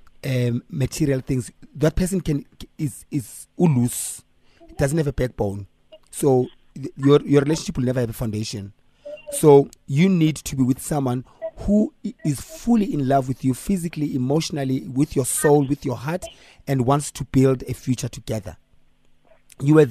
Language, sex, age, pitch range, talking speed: English, male, 30-49, 125-155 Hz, 165 wpm